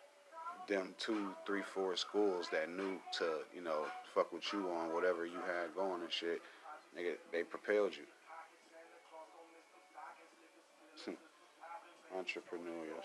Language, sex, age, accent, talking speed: English, male, 30-49, American, 115 wpm